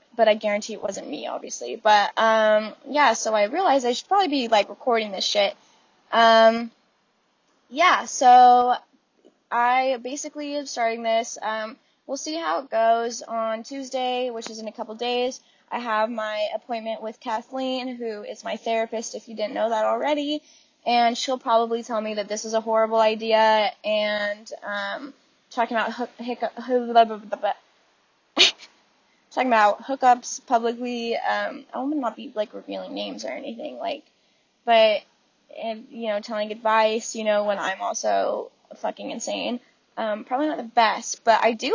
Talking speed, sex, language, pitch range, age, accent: 170 wpm, female, English, 220-255 Hz, 20-39, American